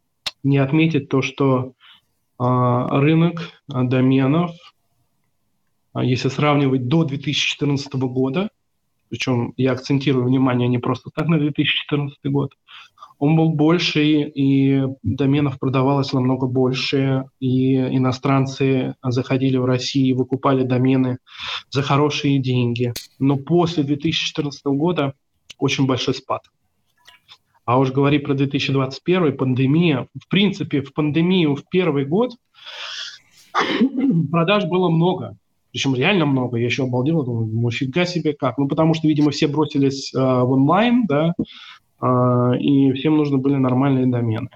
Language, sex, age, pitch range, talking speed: Russian, male, 20-39, 130-150 Hz, 125 wpm